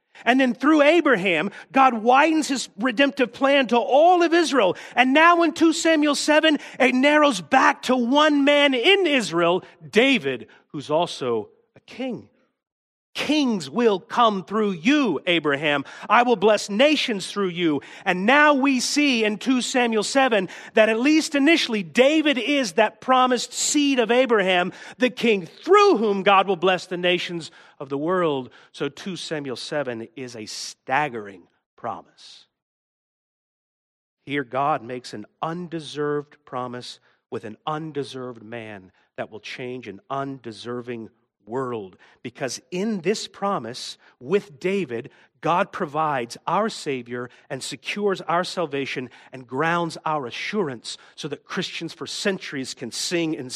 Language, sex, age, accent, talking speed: English, male, 40-59, American, 140 wpm